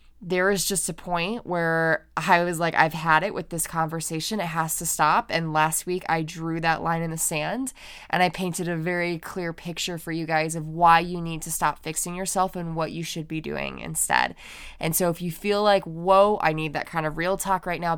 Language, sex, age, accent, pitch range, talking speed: English, female, 20-39, American, 165-205 Hz, 235 wpm